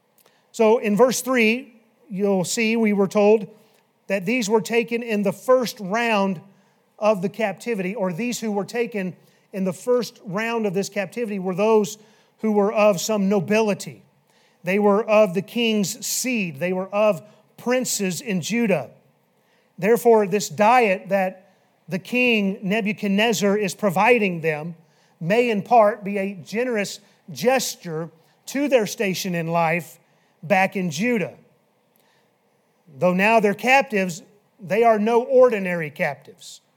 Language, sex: English, male